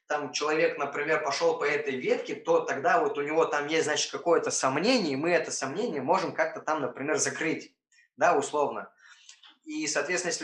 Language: Russian